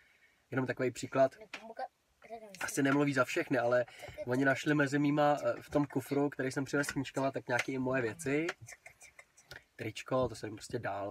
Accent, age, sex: native, 20-39, male